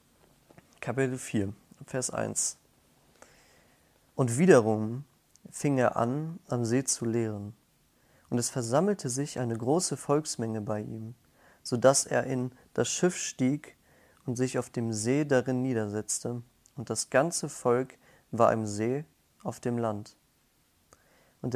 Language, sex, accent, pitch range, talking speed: German, male, German, 115-135 Hz, 130 wpm